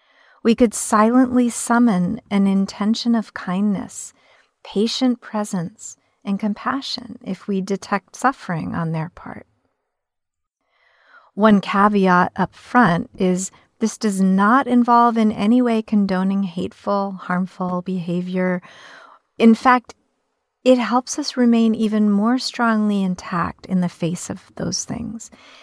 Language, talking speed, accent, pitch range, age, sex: English, 120 wpm, American, 185-235 Hz, 40-59, female